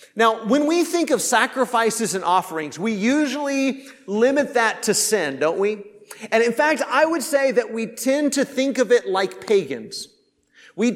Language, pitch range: English, 190-250 Hz